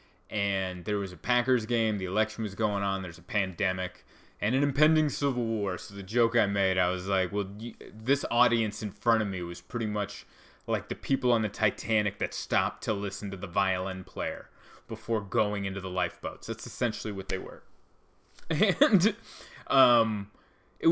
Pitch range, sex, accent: 95-120 Hz, male, American